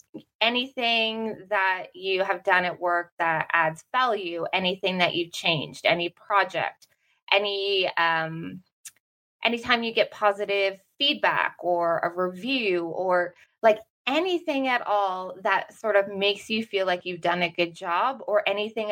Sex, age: female, 20-39